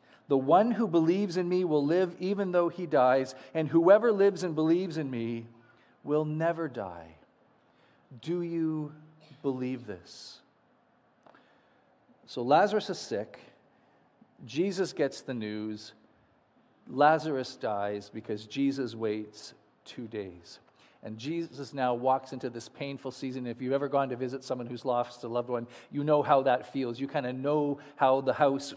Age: 40-59